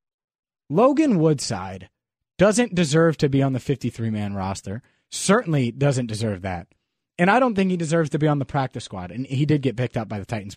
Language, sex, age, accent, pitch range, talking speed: English, male, 30-49, American, 125-185 Hz, 200 wpm